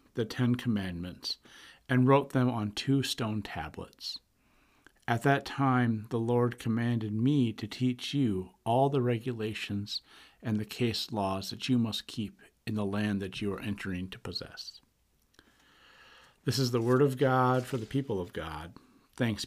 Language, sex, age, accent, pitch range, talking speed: English, male, 50-69, American, 100-125 Hz, 160 wpm